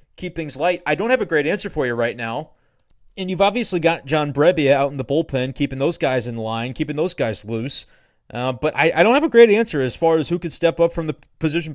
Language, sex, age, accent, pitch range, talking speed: English, male, 30-49, American, 135-165 Hz, 260 wpm